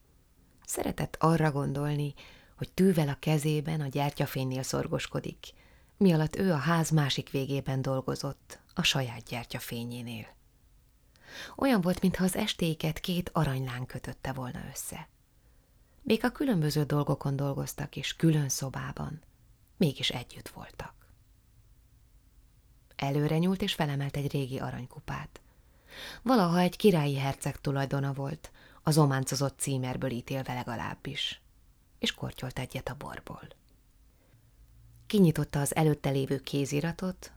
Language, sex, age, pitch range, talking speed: Hungarian, female, 20-39, 130-160 Hz, 110 wpm